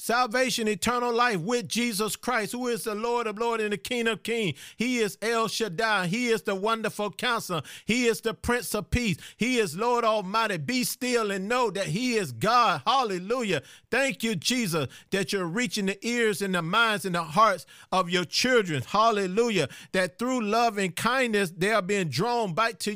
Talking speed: 195 wpm